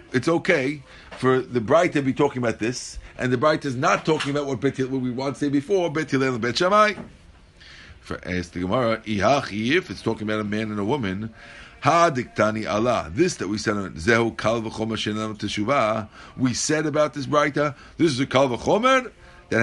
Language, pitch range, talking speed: English, 115-165 Hz, 160 wpm